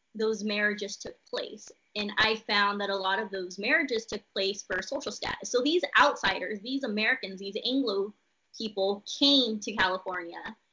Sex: female